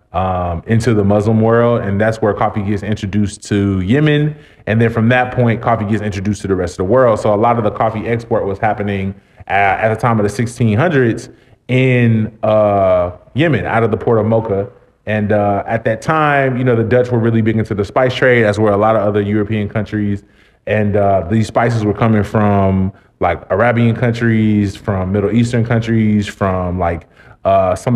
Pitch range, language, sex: 105-120 Hz, English, male